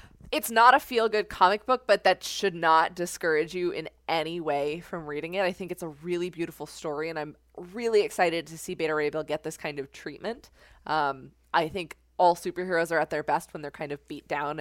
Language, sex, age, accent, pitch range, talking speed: English, female, 20-39, American, 150-190 Hz, 220 wpm